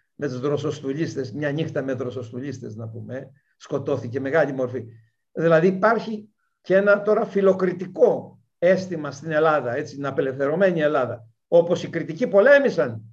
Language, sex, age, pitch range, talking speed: Greek, male, 60-79, 125-200 Hz, 130 wpm